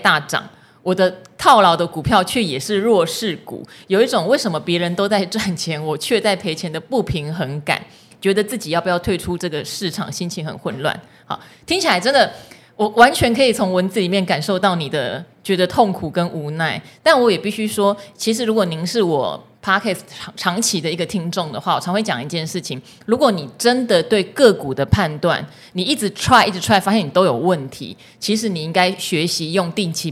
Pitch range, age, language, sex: 160-205 Hz, 30-49, Chinese, female